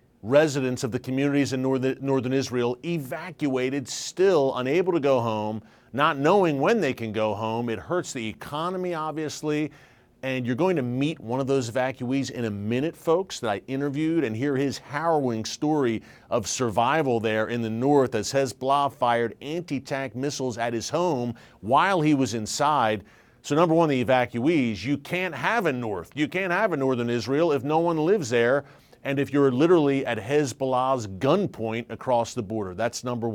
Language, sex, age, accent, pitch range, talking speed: English, male, 40-59, American, 120-145 Hz, 175 wpm